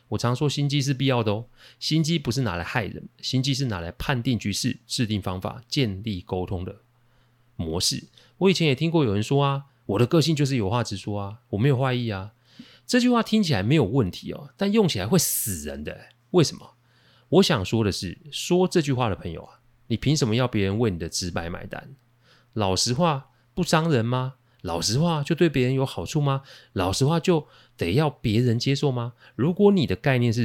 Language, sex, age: Chinese, male, 30-49